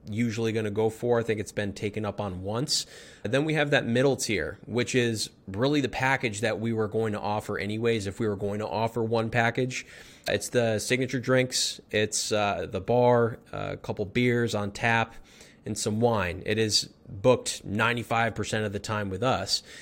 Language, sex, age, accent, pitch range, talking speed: English, male, 20-39, American, 105-120 Hz, 195 wpm